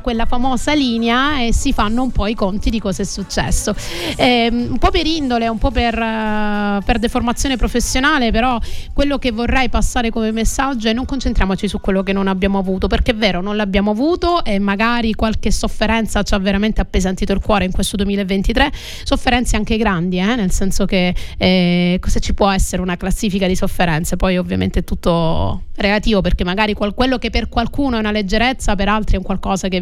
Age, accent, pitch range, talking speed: 30-49, native, 200-240 Hz, 195 wpm